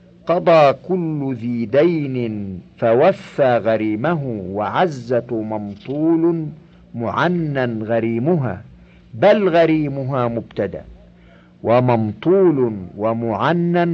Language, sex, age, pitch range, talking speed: Arabic, male, 50-69, 115-140 Hz, 60 wpm